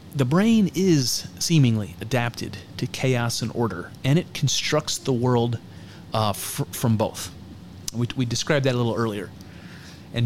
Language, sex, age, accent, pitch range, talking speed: English, male, 30-49, American, 105-135 Hz, 145 wpm